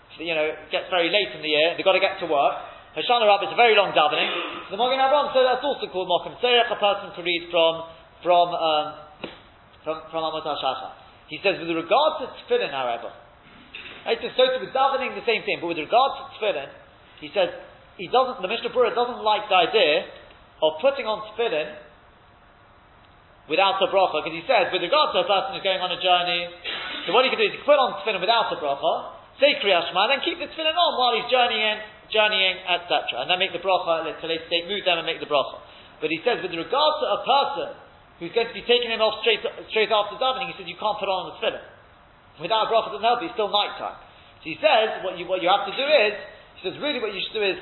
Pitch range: 165-235 Hz